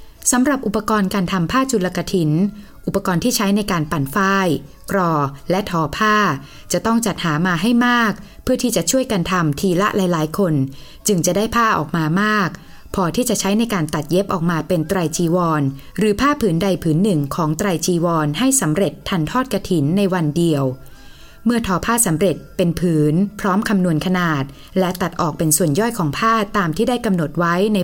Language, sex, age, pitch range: Thai, female, 20-39, 165-215 Hz